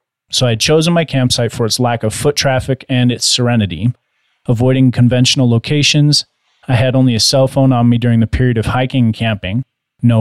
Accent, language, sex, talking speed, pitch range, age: American, English, male, 200 wpm, 115-135 Hz, 30-49